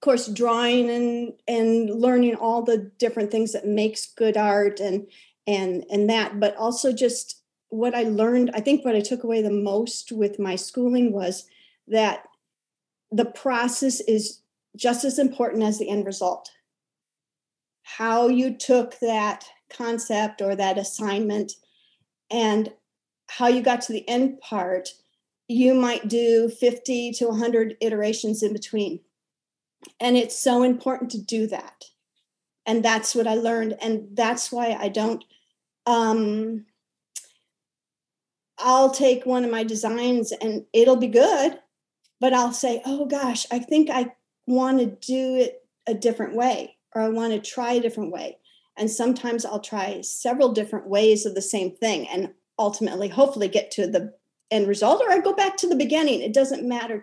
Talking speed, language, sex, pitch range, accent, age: 160 wpm, English, female, 215-245 Hz, American, 40-59